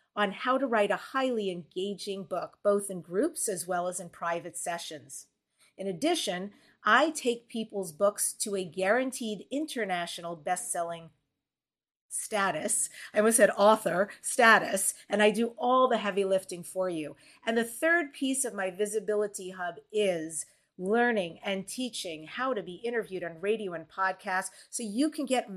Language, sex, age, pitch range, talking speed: English, female, 40-59, 180-230 Hz, 155 wpm